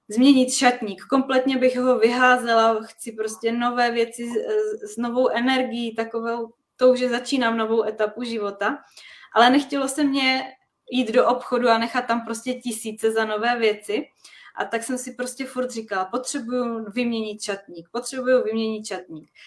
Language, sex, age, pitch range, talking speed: Czech, female, 20-39, 225-255 Hz, 150 wpm